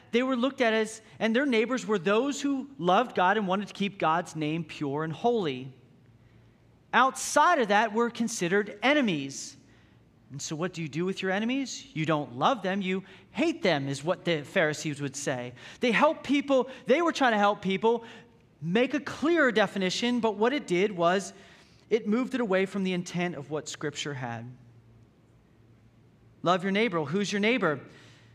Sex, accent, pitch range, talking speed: male, American, 155-225 Hz, 180 wpm